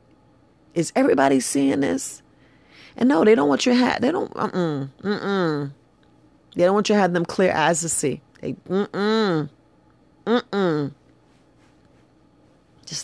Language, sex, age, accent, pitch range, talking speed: English, female, 40-59, American, 150-180 Hz, 140 wpm